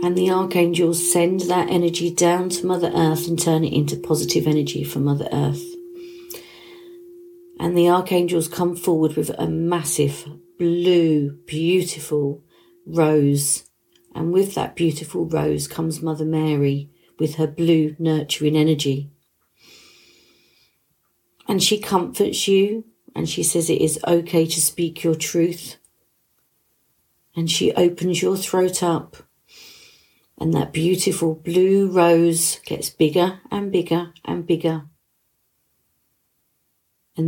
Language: English